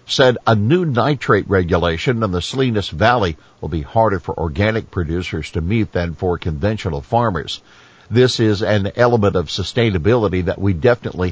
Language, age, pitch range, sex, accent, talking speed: English, 60-79, 90-115 Hz, male, American, 160 wpm